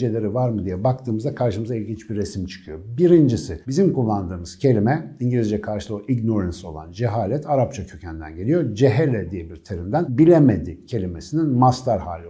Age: 60-79